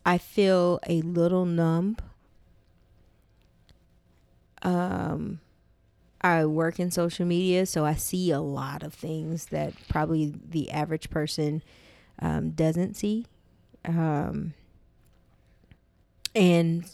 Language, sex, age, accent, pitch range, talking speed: English, female, 20-39, American, 150-170 Hz, 100 wpm